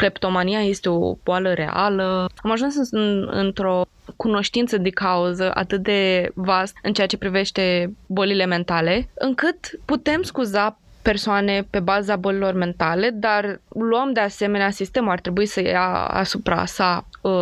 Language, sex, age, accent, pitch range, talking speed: Romanian, female, 20-39, native, 190-230 Hz, 140 wpm